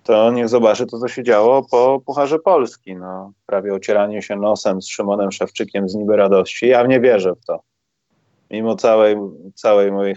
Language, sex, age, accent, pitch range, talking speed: Polish, male, 30-49, native, 105-140 Hz, 175 wpm